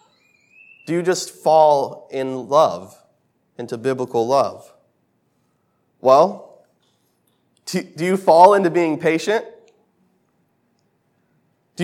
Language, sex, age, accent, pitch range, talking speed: English, male, 20-39, American, 150-180 Hz, 85 wpm